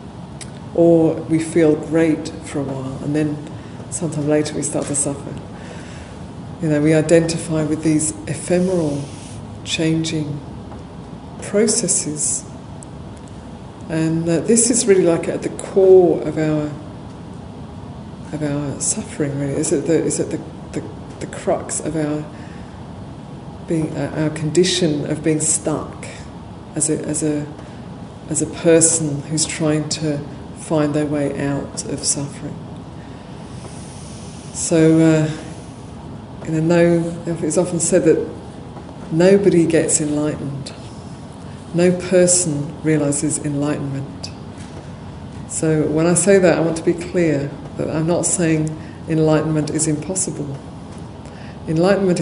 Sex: female